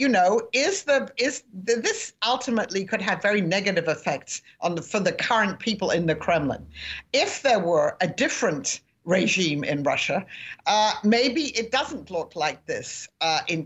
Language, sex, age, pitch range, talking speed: English, female, 50-69, 180-235 Hz, 170 wpm